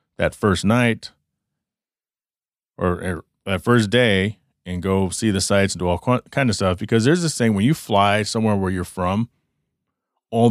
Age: 30-49